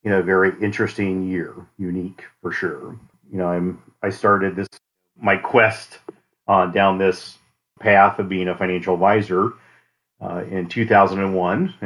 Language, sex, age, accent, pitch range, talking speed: English, male, 40-59, American, 90-100 Hz, 140 wpm